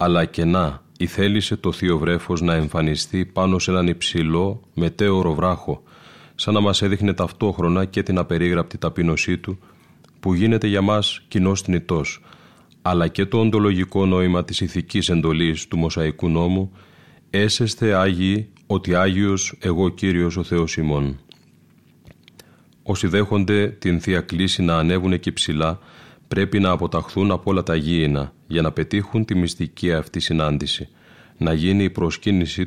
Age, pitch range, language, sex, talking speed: 30-49, 85-100 Hz, Greek, male, 145 wpm